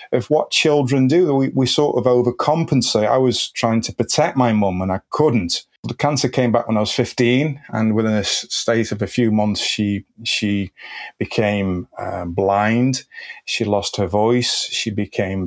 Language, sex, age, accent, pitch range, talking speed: English, male, 30-49, British, 105-125 Hz, 180 wpm